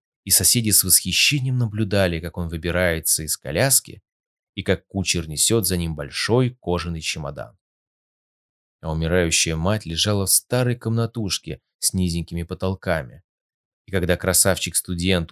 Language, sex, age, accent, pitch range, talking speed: Russian, male, 20-39, native, 90-115 Hz, 125 wpm